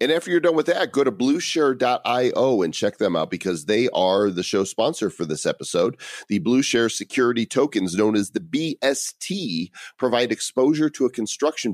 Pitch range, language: 95-130 Hz, English